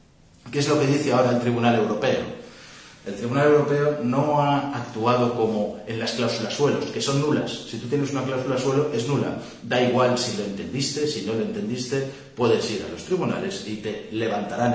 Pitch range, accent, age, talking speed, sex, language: 115-140 Hz, Spanish, 30-49, 195 wpm, male, Spanish